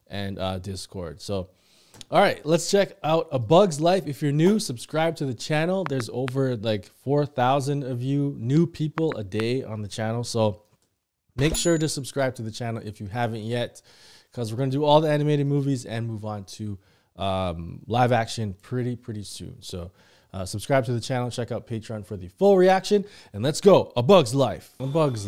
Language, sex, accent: English, male, American